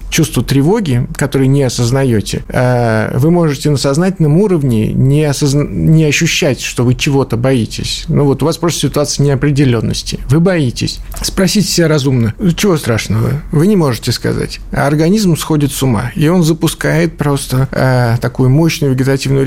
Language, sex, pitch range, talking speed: Russian, male, 125-150 Hz, 150 wpm